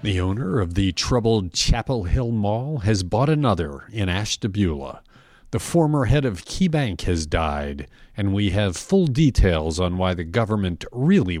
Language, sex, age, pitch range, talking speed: English, male, 40-59, 95-130 Hz, 160 wpm